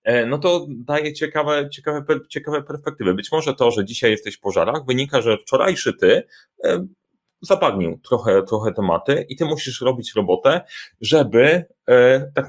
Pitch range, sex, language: 115-150 Hz, male, Polish